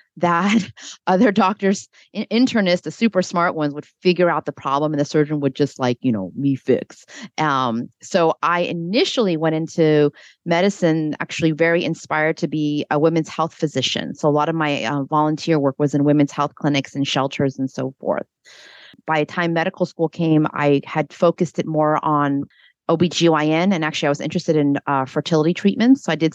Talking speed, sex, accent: 185 wpm, female, American